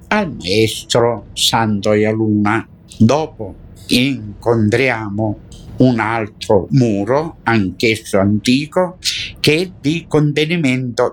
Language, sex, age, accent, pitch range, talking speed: Italian, male, 60-79, native, 100-130 Hz, 80 wpm